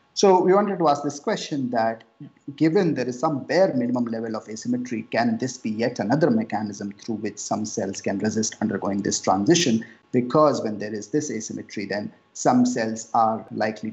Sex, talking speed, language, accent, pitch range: male, 185 wpm, English, Indian, 110-155 Hz